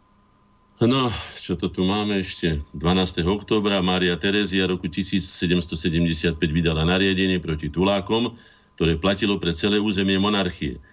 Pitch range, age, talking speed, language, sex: 80-95 Hz, 50-69, 120 wpm, Slovak, male